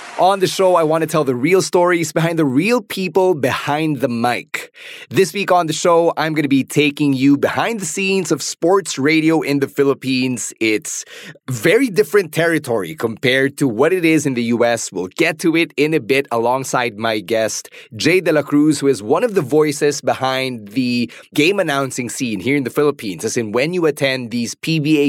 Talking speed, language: 200 wpm, English